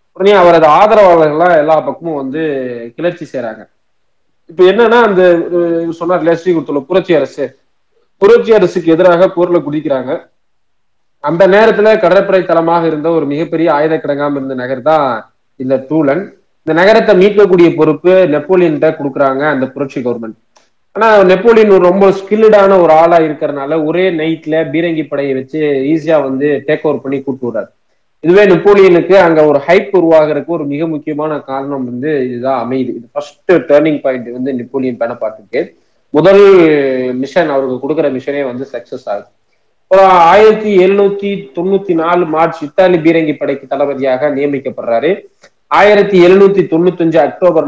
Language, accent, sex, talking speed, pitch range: Tamil, native, male, 130 wpm, 140-180 Hz